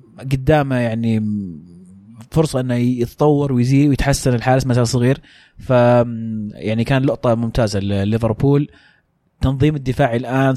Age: 30-49